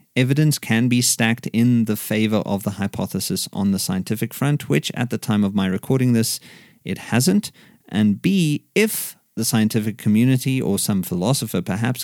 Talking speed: 170 wpm